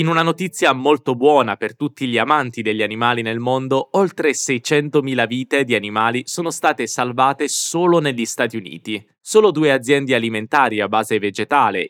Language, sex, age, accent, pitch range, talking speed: Portuguese, male, 20-39, Italian, 115-150 Hz, 160 wpm